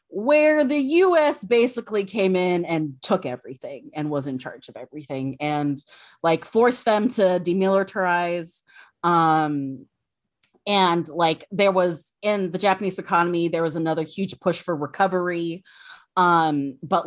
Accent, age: American, 30-49